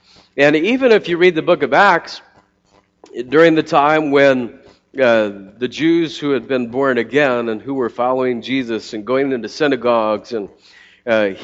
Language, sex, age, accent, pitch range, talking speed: English, male, 40-59, American, 120-165 Hz, 170 wpm